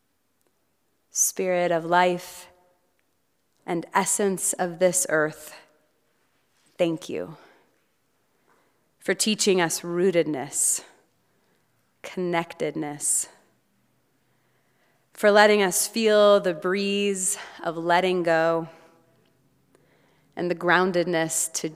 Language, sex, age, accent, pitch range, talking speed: English, female, 30-49, American, 155-180 Hz, 75 wpm